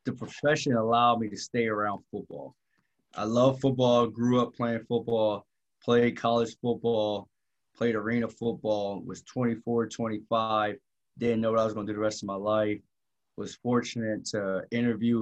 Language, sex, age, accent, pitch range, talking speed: English, male, 20-39, American, 110-120 Hz, 160 wpm